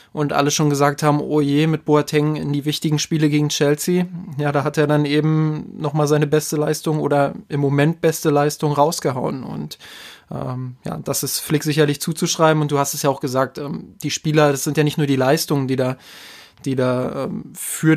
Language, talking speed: German, 205 wpm